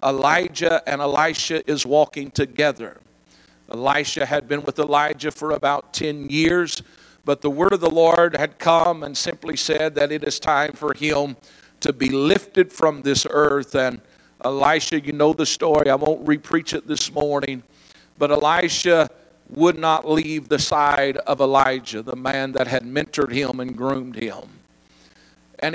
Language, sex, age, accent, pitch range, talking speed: English, male, 50-69, American, 135-160 Hz, 160 wpm